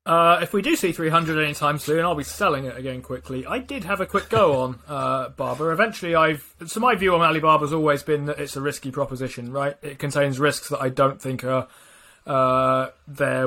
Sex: male